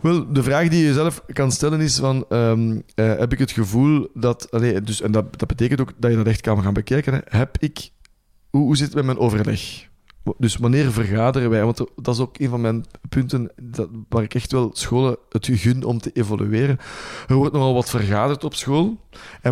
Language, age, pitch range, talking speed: Dutch, 20-39, 115-135 Hz, 215 wpm